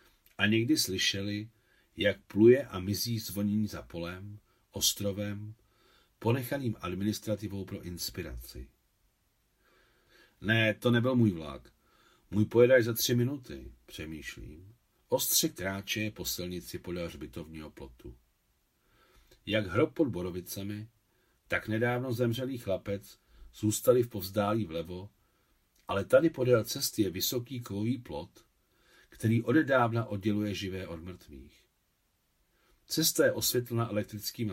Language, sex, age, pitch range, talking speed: Czech, male, 50-69, 90-120 Hz, 110 wpm